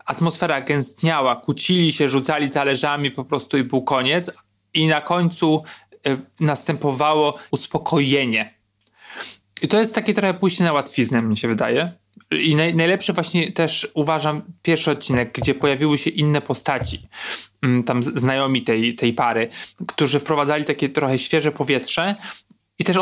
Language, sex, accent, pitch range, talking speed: Polish, male, native, 130-165 Hz, 135 wpm